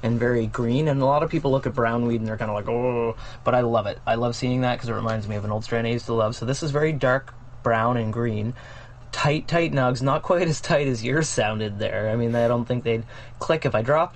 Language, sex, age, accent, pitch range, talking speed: English, male, 20-39, American, 115-135 Hz, 285 wpm